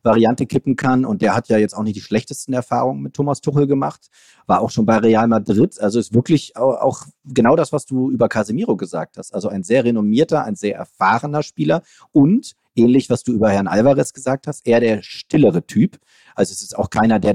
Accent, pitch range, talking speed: German, 100-135 Hz, 215 wpm